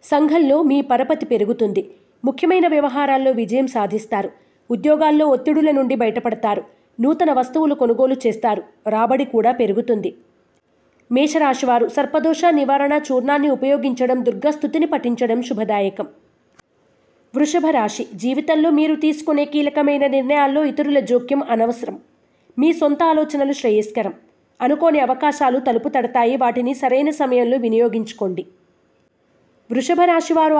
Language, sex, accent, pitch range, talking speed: Telugu, female, native, 240-300 Hz, 100 wpm